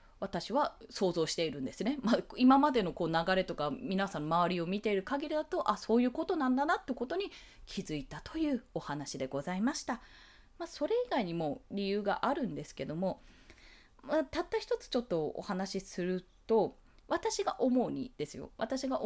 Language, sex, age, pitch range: Japanese, female, 20-39, 175-280 Hz